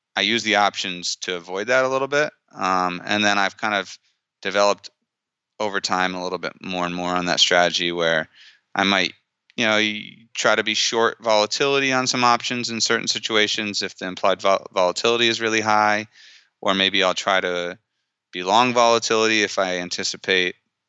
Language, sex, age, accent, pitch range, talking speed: English, male, 30-49, American, 90-110 Hz, 180 wpm